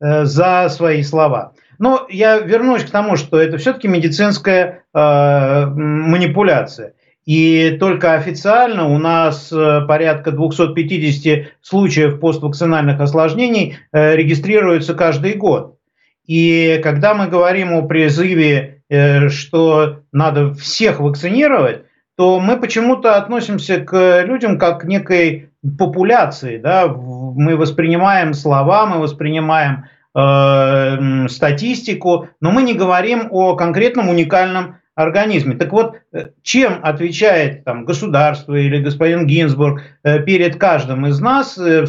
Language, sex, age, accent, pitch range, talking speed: Russian, male, 50-69, native, 150-185 Hz, 115 wpm